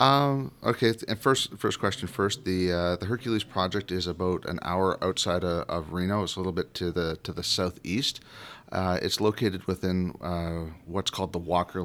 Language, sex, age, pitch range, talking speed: English, male, 30-49, 90-100 Hz, 195 wpm